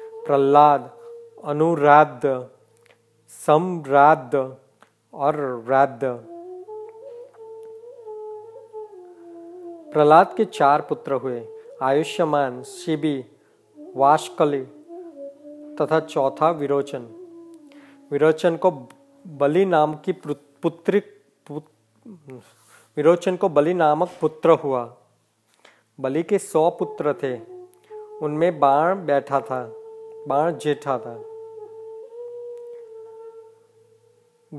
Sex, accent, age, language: male, native, 40-59, Hindi